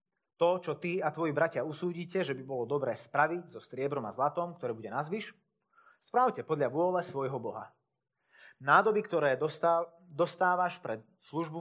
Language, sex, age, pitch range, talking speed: Slovak, male, 30-49, 135-175 Hz, 150 wpm